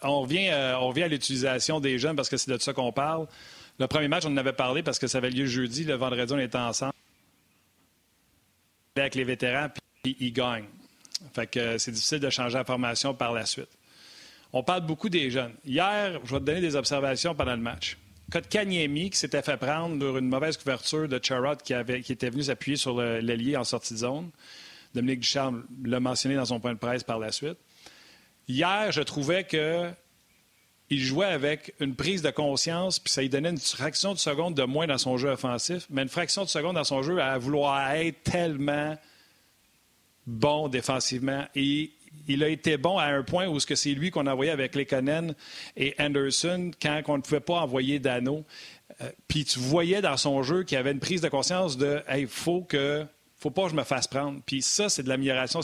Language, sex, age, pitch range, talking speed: French, male, 40-59, 130-155 Hz, 215 wpm